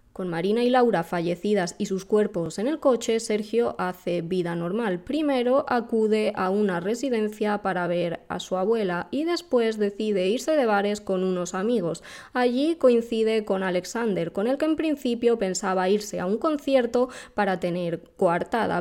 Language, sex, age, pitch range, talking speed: Spanish, female, 20-39, 180-230 Hz, 165 wpm